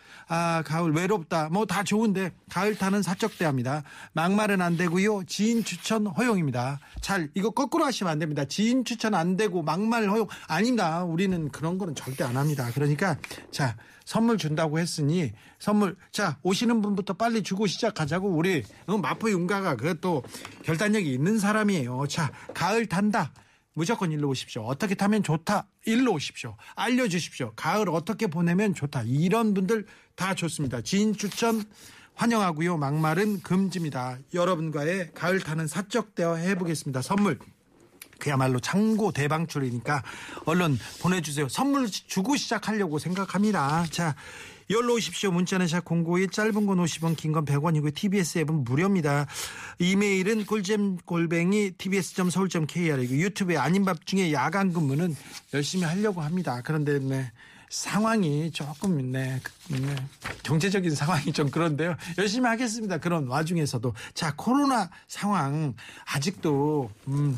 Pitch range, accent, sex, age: 150-205 Hz, native, male, 40-59